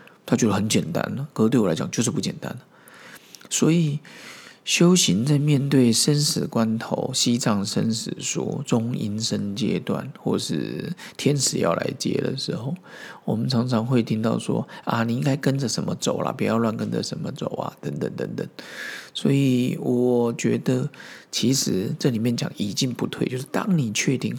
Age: 50-69